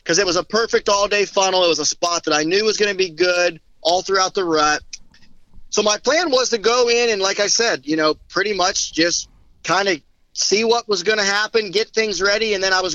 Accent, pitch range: American, 170-210 Hz